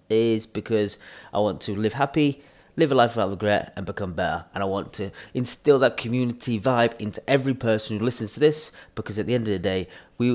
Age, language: 30-49, English